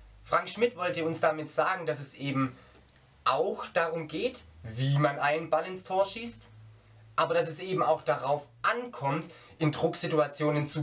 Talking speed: 160 wpm